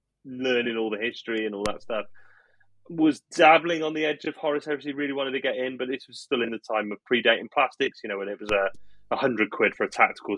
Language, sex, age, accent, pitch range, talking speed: English, male, 30-49, British, 105-145 Hz, 250 wpm